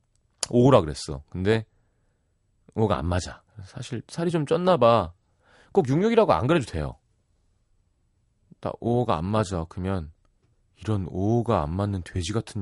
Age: 30-49